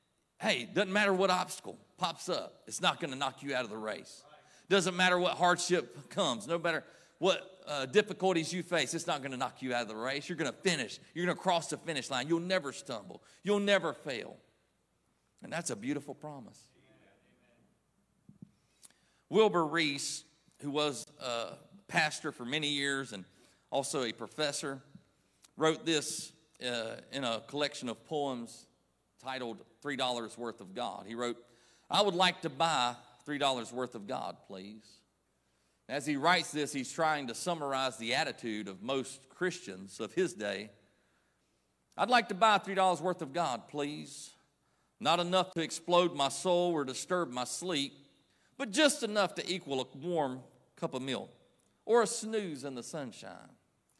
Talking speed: 170 wpm